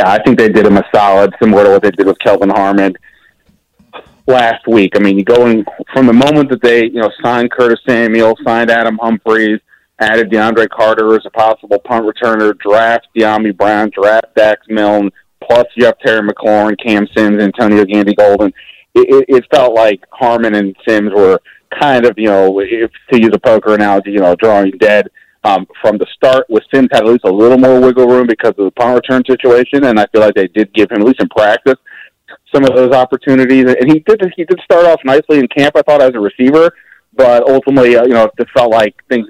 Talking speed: 220 wpm